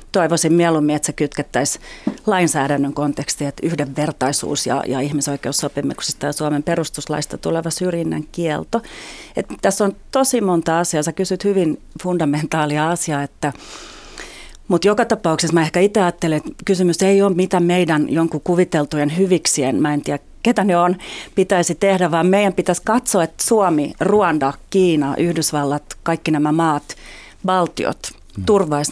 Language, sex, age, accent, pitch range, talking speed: Finnish, female, 30-49, native, 150-185 Hz, 135 wpm